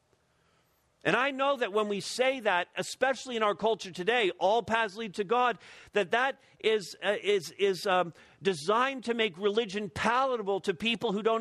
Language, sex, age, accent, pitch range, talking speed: English, male, 50-69, American, 185-230 Hz, 180 wpm